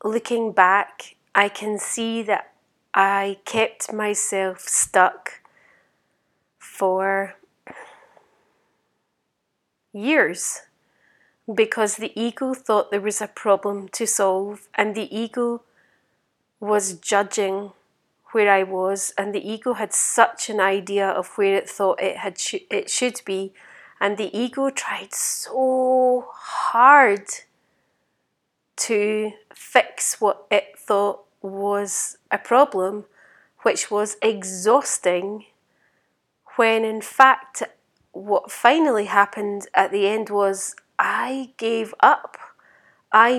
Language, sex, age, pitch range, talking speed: English, female, 30-49, 200-225 Hz, 105 wpm